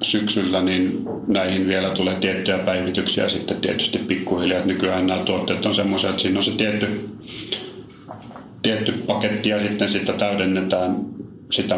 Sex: male